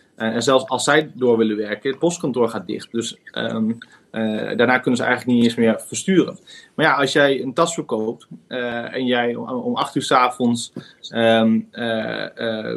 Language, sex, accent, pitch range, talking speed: Dutch, male, Dutch, 115-145 Hz, 195 wpm